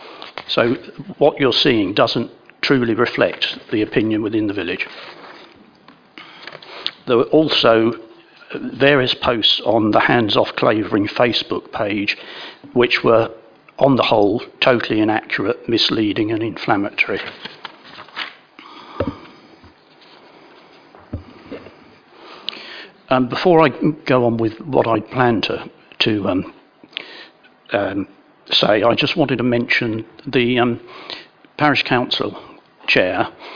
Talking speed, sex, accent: 105 wpm, male, British